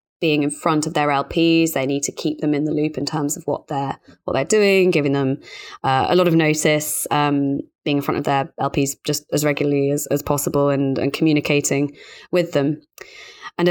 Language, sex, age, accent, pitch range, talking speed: English, female, 20-39, British, 145-165 Hz, 210 wpm